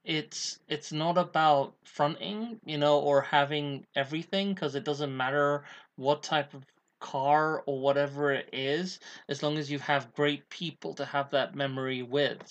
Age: 20-39